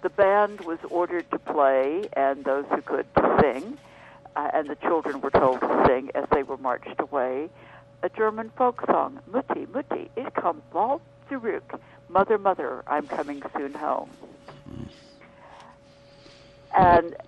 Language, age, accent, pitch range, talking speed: English, 60-79, American, 140-175 Hz, 145 wpm